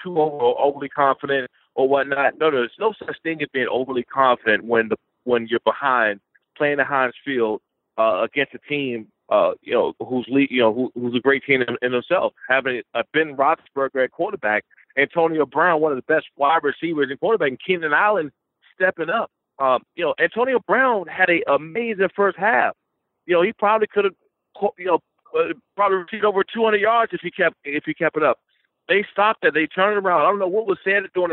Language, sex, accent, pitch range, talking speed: English, male, American, 135-185 Hz, 205 wpm